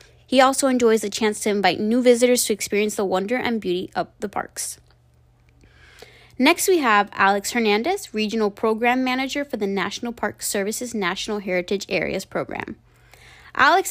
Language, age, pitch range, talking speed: English, 20-39, 200-245 Hz, 155 wpm